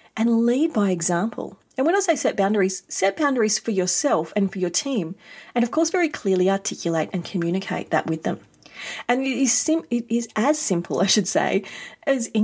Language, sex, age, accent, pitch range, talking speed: English, female, 40-59, Australian, 180-230 Hz, 195 wpm